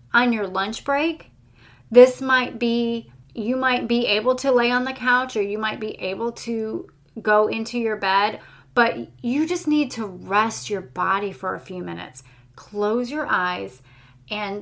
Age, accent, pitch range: 30-49, American, 195-255 Hz